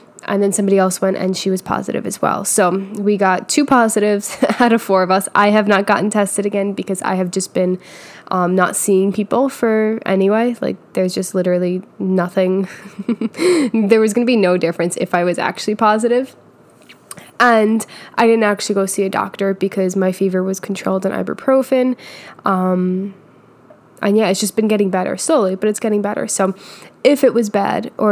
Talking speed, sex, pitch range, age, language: 190 wpm, female, 190-220 Hz, 10-29, English